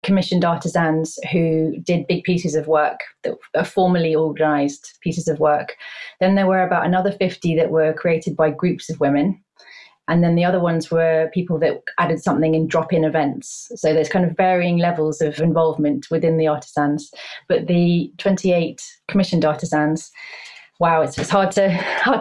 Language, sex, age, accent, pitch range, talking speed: English, female, 30-49, British, 155-180 Hz, 170 wpm